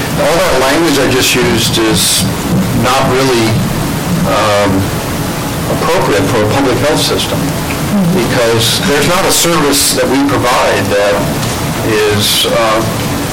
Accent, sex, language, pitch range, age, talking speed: American, male, English, 110-140 Hz, 60-79, 120 wpm